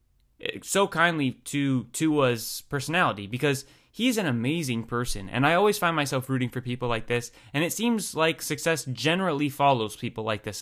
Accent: American